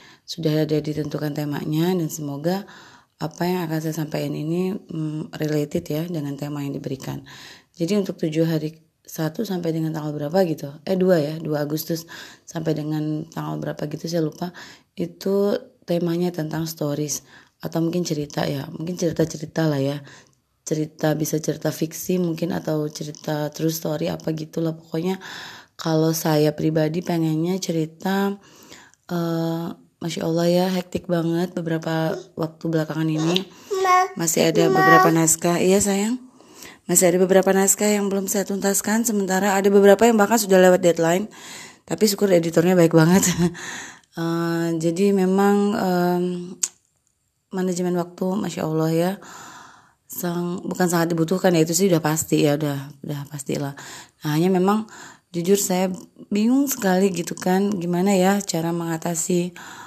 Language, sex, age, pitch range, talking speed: Indonesian, female, 20-39, 155-185 Hz, 140 wpm